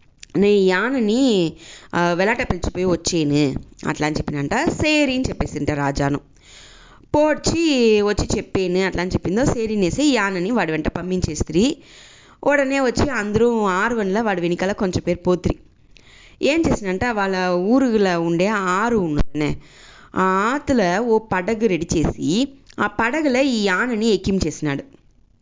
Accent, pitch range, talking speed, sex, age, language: Indian, 180-255 Hz, 80 wpm, female, 20-39, English